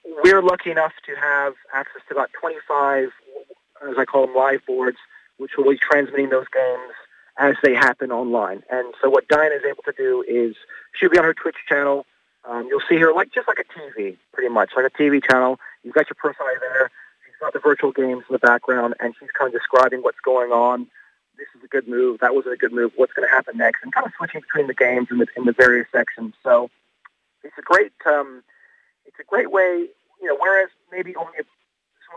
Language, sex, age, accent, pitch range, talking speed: English, male, 30-49, American, 125-185 Hz, 225 wpm